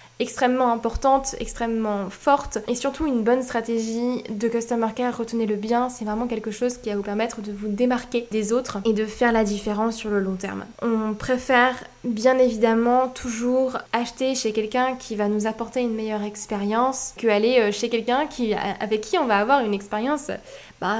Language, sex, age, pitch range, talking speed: French, female, 20-39, 220-255 Hz, 185 wpm